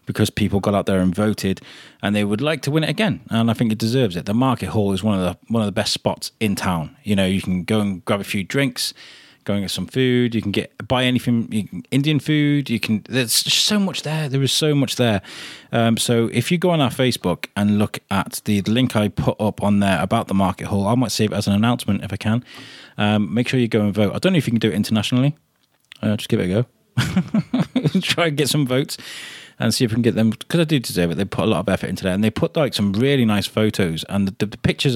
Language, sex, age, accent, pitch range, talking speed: English, male, 20-39, British, 105-130 Hz, 280 wpm